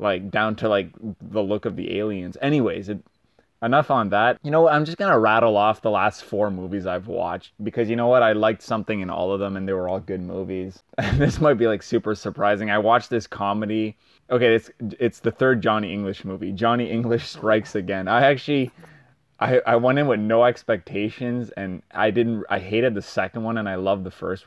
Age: 20-39